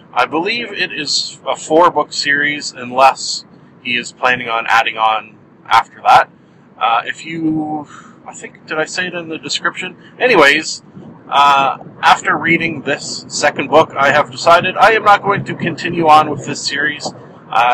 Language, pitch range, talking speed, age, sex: English, 130-165 Hz, 165 wpm, 40-59, male